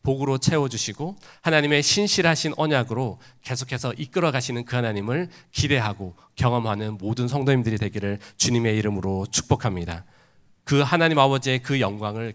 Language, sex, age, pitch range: Korean, male, 40-59, 110-140 Hz